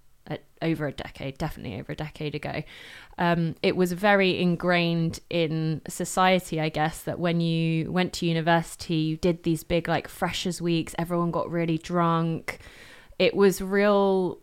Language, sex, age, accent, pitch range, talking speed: English, female, 20-39, British, 170-200 Hz, 155 wpm